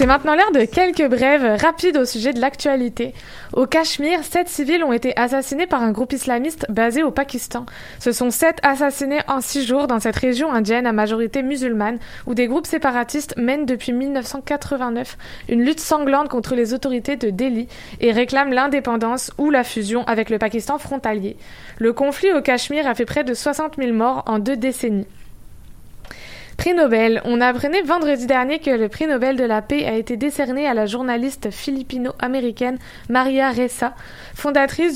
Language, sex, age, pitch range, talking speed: French, female, 20-39, 240-285 Hz, 175 wpm